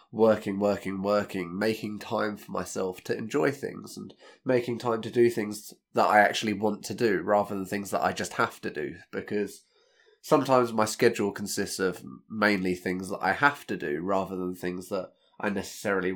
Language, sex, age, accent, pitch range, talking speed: English, male, 20-39, British, 90-110 Hz, 185 wpm